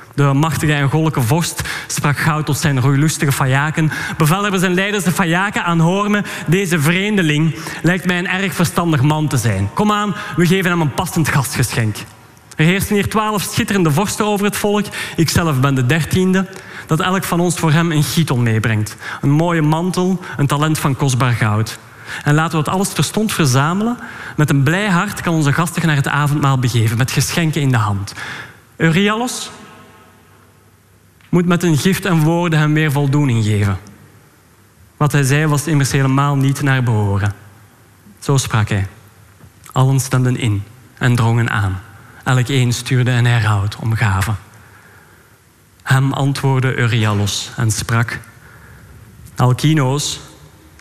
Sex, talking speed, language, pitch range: male, 155 wpm, Dutch, 115-160 Hz